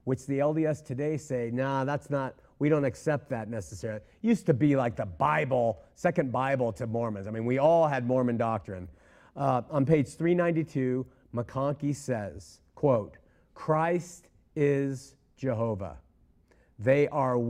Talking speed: 140 wpm